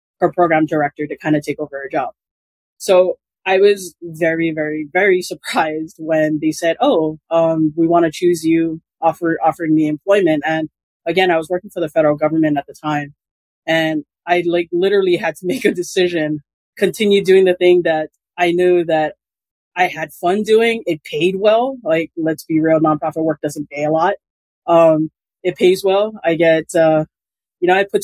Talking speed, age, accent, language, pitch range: 190 wpm, 20-39, American, English, 155-180 Hz